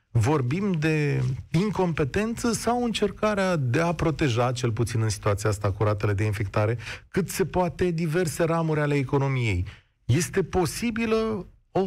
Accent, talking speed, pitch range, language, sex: native, 130 wpm, 105-155 Hz, Romanian, male